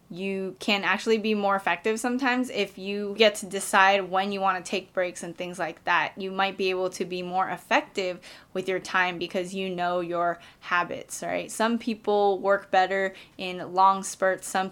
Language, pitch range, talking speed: English, 185-210 Hz, 190 wpm